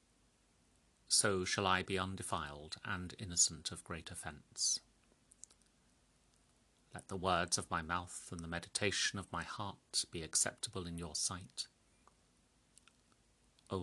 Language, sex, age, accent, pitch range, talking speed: English, male, 40-59, British, 85-100 Hz, 120 wpm